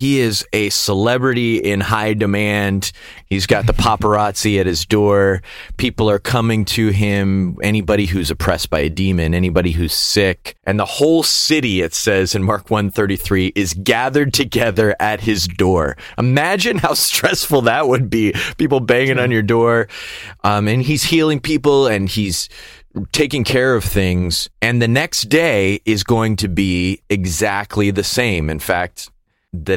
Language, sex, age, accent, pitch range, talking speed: English, male, 30-49, American, 95-120 Hz, 160 wpm